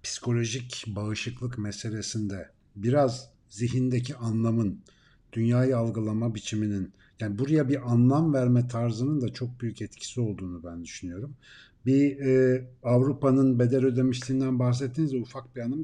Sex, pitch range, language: male, 115-155 Hz, Turkish